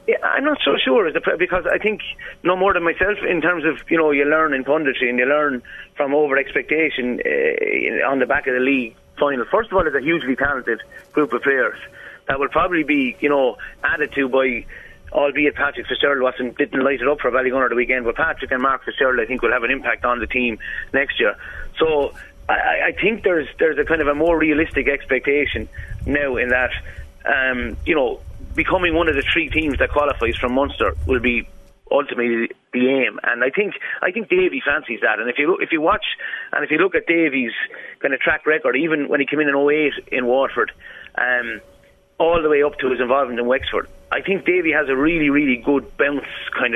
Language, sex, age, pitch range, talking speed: English, male, 30-49, 130-170 Hz, 225 wpm